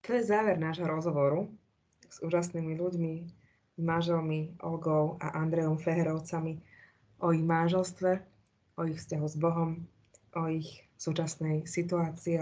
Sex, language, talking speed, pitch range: female, Slovak, 120 wpm, 160-175 Hz